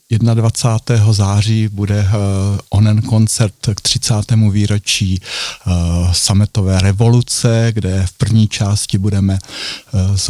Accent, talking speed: native, 95 wpm